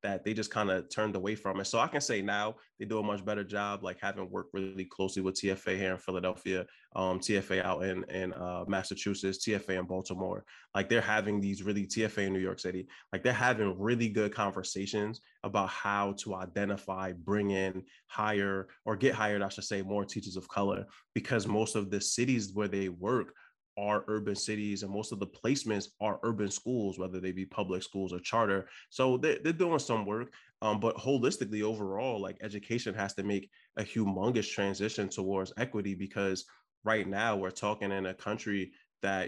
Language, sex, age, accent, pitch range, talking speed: English, male, 20-39, American, 95-105 Hz, 195 wpm